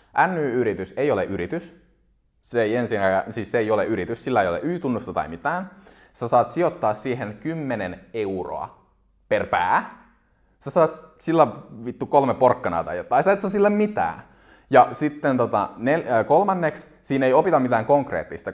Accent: native